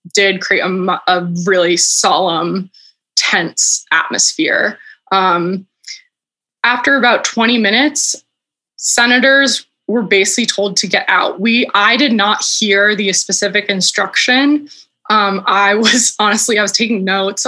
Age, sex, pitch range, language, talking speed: 20-39, female, 195-235 Hz, English, 125 wpm